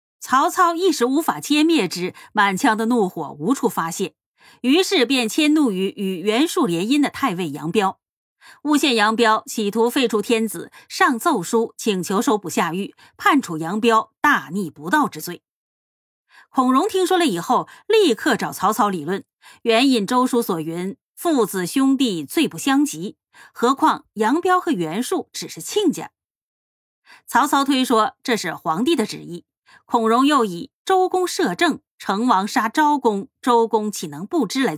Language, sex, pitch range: Chinese, female, 195-280 Hz